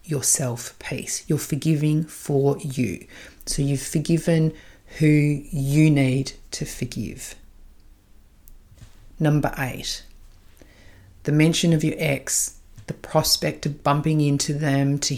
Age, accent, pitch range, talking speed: 40-59, Australian, 130-150 Hz, 110 wpm